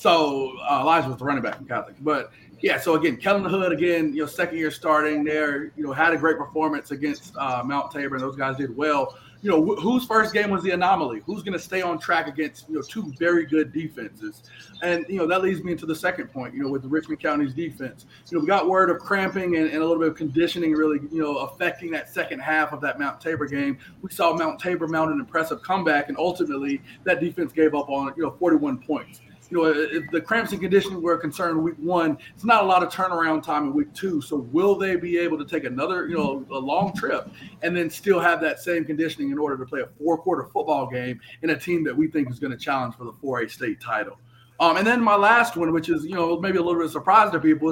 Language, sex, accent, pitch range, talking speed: English, male, American, 150-180 Hz, 260 wpm